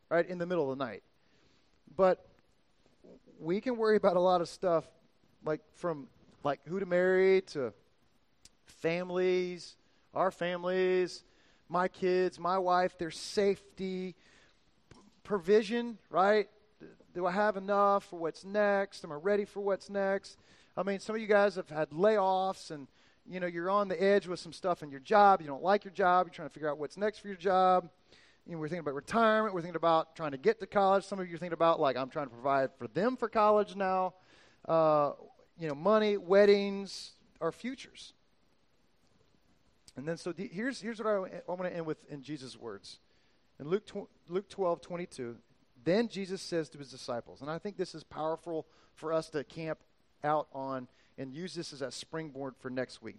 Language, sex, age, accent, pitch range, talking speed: English, male, 40-59, American, 155-200 Hz, 190 wpm